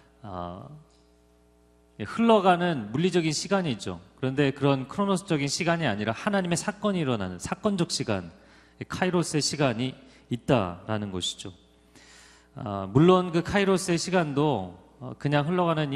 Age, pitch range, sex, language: 30-49, 115-175 Hz, male, Korean